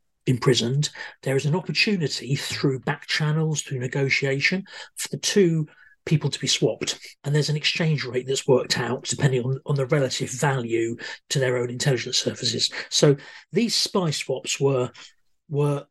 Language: English